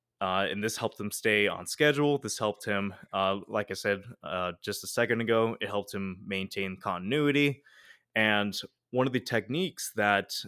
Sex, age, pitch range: male, 20-39, 100-115 Hz